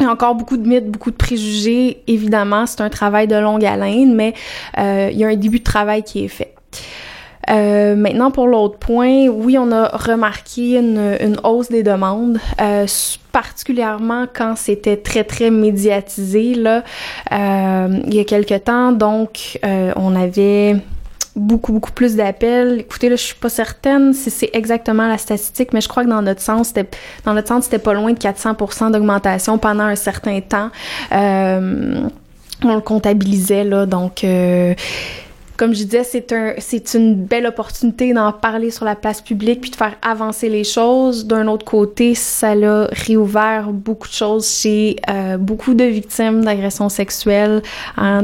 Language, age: French, 20-39